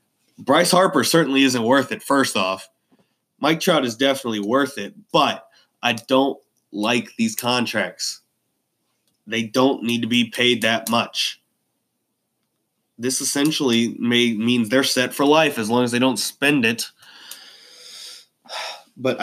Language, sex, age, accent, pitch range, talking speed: English, male, 20-39, American, 110-145 Hz, 135 wpm